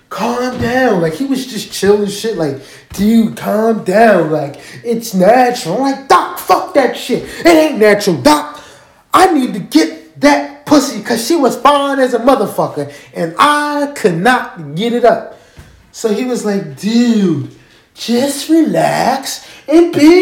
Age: 20-39